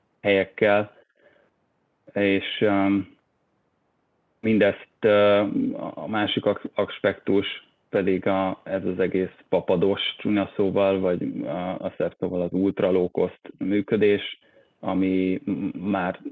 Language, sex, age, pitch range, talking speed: Hungarian, male, 30-49, 95-105 Hz, 95 wpm